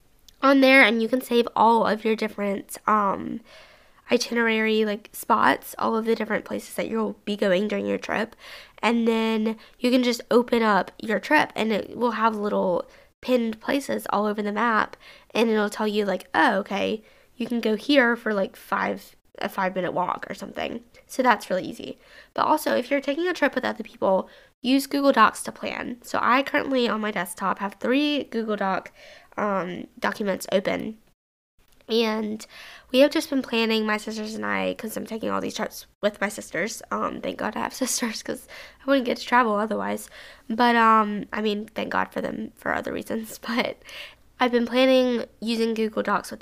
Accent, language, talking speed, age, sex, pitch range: American, English, 195 wpm, 10-29, female, 205-250 Hz